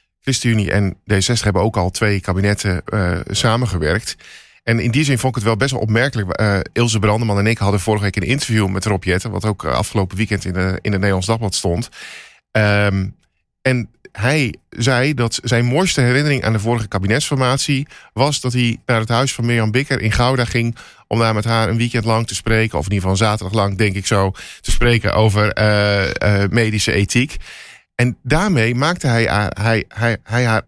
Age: 50-69